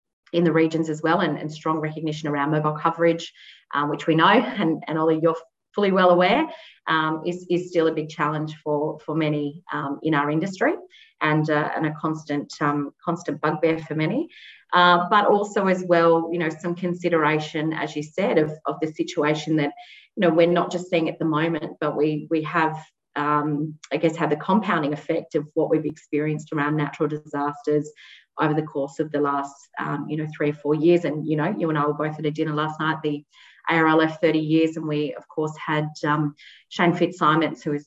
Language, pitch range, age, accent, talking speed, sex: English, 150-165 Hz, 30-49, Australian, 210 wpm, female